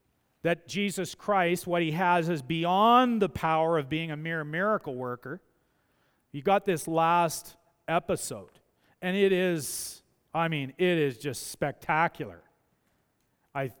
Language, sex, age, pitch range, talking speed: English, male, 40-59, 150-185 Hz, 135 wpm